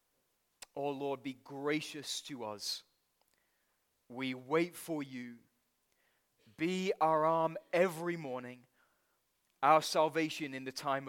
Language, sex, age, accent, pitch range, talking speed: English, male, 20-39, British, 135-160 Hz, 115 wpm